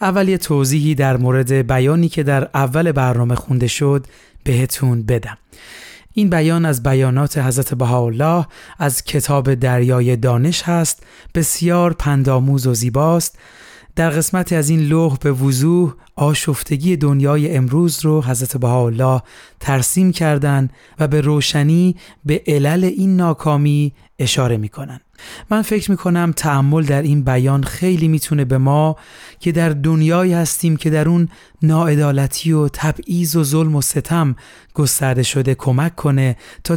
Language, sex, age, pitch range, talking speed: Persian, male, 30-49, 135-165 Hz, 140 wpm